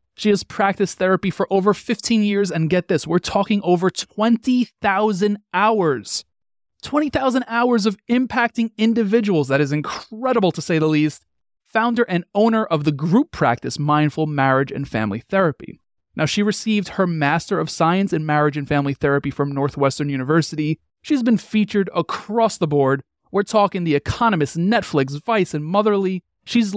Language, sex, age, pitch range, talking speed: English, male, 30-49, 145-205 Hz, 155 wpm